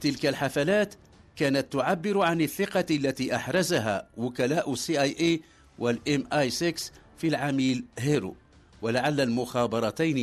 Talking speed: 110 wpm